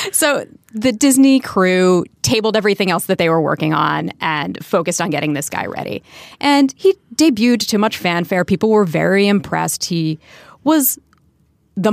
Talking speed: 160 wpm